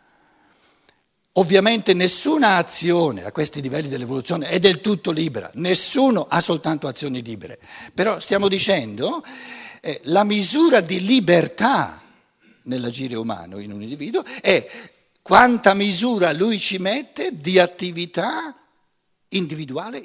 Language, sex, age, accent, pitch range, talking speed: Italian, male, 60-79, native, 145-200 Hz, 115 wpm